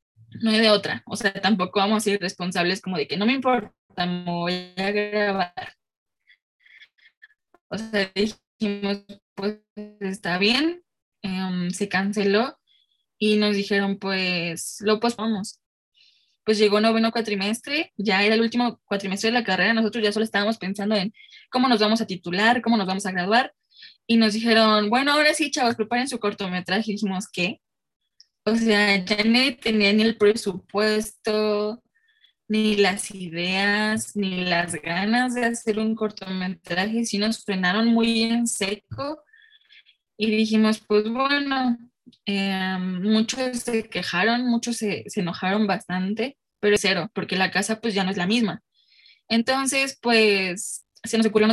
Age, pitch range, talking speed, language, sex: 10-29, 195-230 Hz, 155 wpm, Spanish, female